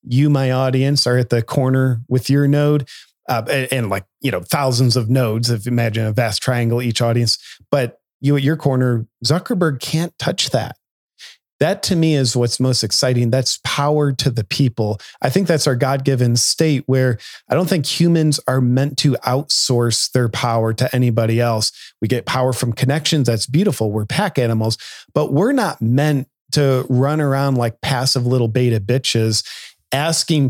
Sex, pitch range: male, 120-155 Hz